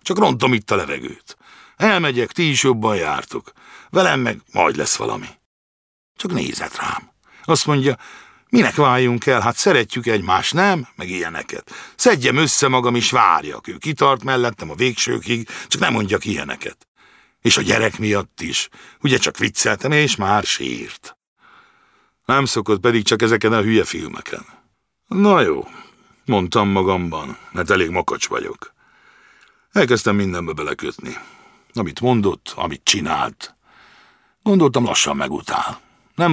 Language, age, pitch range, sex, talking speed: Hungarian, 60-79, 100-150 Hz, male, 135 wpm